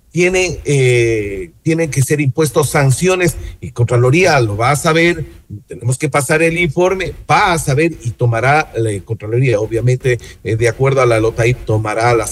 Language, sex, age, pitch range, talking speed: Spanish, male, 50-69, 115-155 Hz, 165 wpm